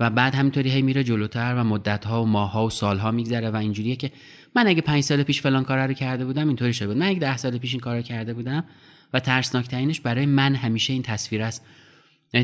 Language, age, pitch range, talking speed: Persian, 30-49, 105-135 Hz, 240 wpm